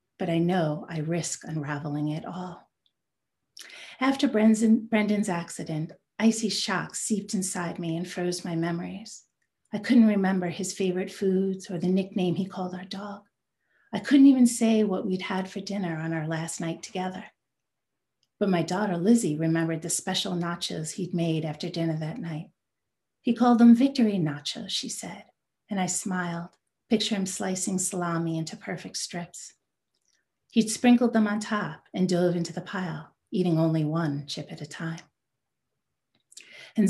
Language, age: English, 40-59